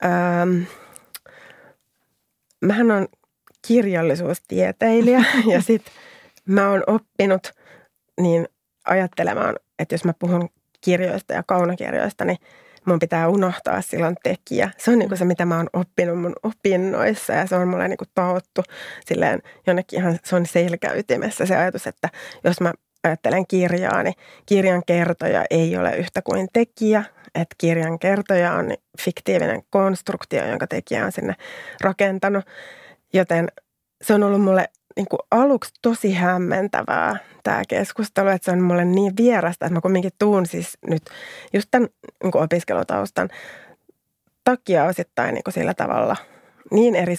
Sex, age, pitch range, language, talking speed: female, 30-49, 175-200 Hz, Finnish, 130 wpm